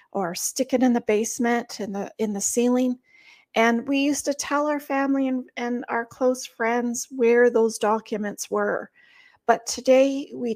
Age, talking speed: 40-59, 170 wpm